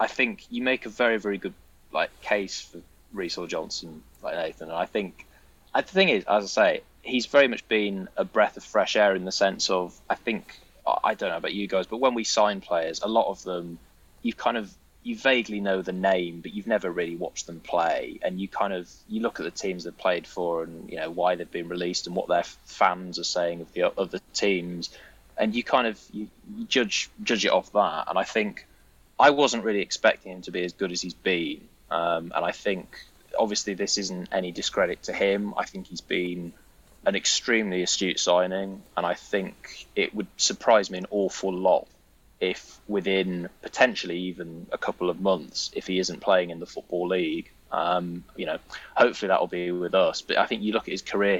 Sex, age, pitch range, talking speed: male, 20-39, 90-105 Hz, 220 wpm